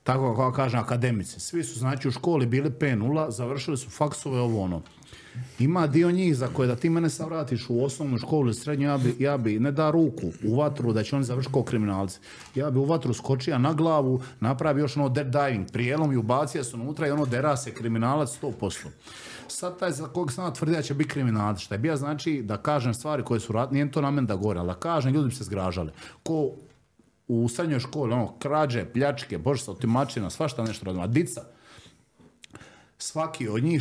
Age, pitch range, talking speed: 50-69, 115-150 Hz, 205 wpm